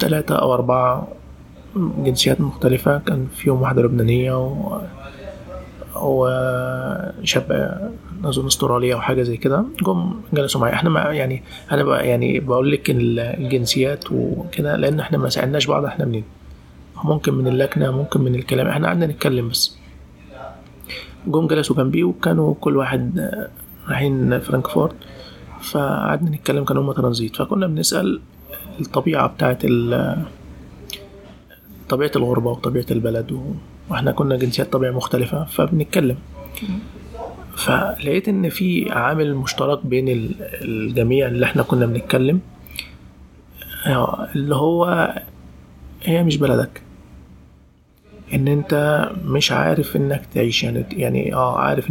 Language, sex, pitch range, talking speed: Arabic, male, 120-145 Hz, 115 wpm